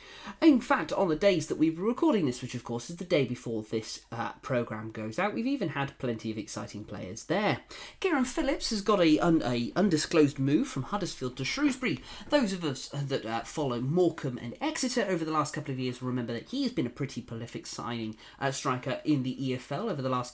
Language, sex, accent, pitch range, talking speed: English, male, British, 125-195 Hz, 225 wpm